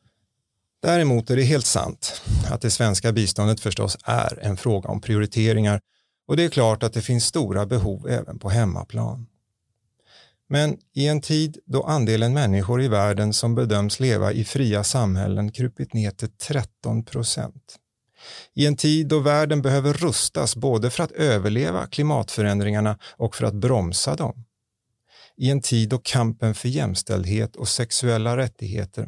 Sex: male